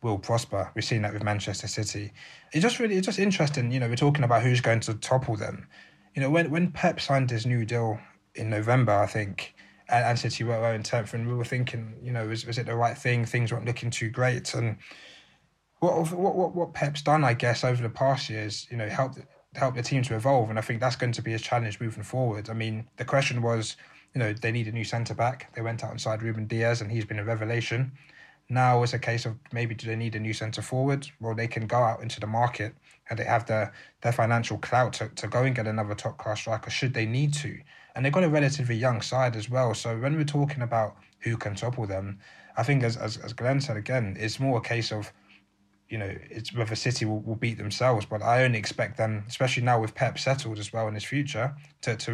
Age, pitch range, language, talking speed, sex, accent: 20-39, 110-130 Hz, English, 245 wpm, male, British